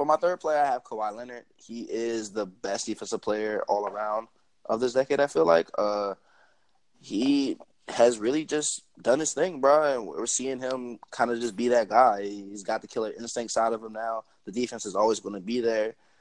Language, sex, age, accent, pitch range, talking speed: English, male, 20-39, American, 110-170 Hz, 215 wpm